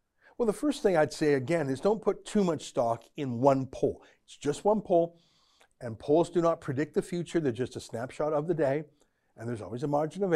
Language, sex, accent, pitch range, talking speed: English, male, American, 135-185 Hz, 230 wpm